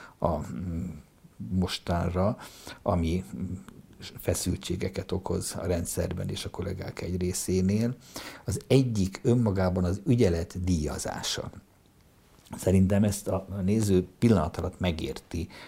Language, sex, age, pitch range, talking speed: Hungarian, male, 60-79, 85-100 Hz, 95 wpm